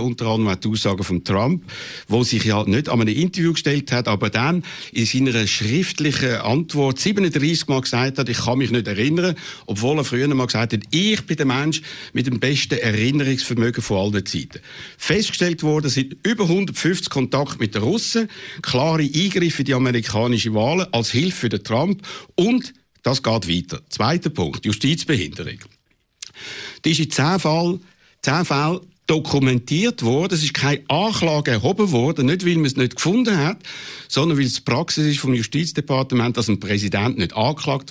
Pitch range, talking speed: 115-160 Hz, 175 wpm